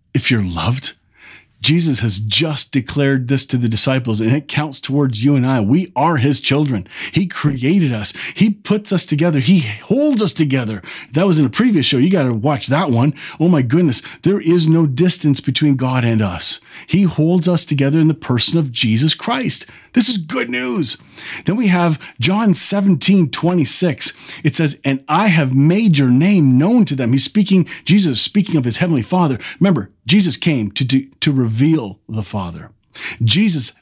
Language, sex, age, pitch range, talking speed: English, male, 40-59, 120-165 Hz, 190 wpm